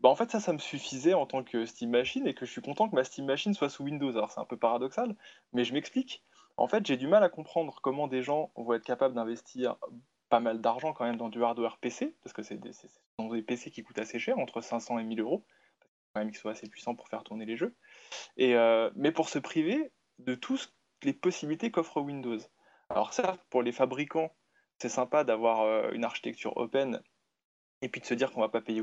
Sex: male